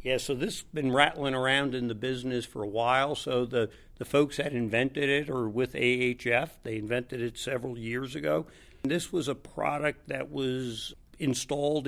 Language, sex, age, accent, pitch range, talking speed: English, male, 60-79, American, 115-135 Hz, 190 wpm